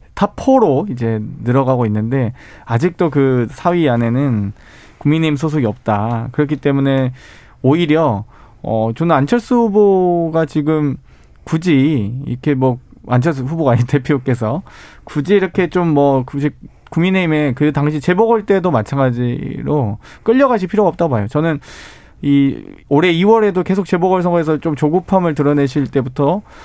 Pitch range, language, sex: 125-170 Hz, Korean, male